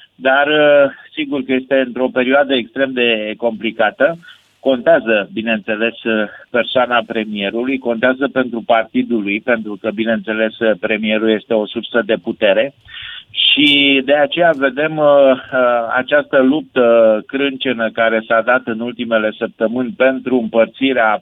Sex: male